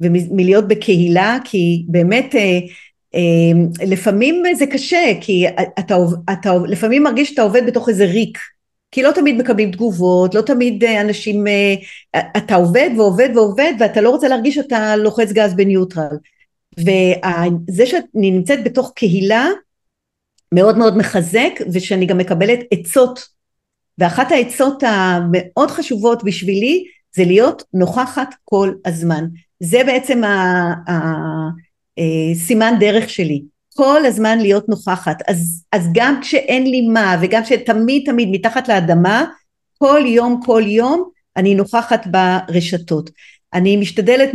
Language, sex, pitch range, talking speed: English, female, 180-245 Hz, 125 wpm